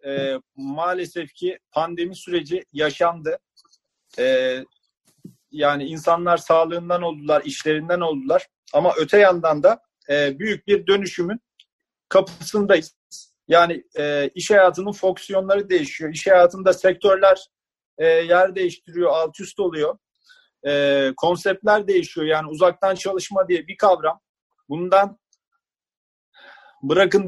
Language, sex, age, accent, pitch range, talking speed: Turkish, male, 40-59, native, 170-215 Hz, 105 wpm